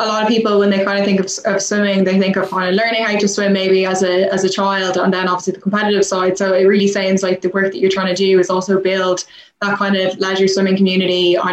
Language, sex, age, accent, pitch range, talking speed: English, female, 10-29, Irish, 190-215 Hz, 285 wpm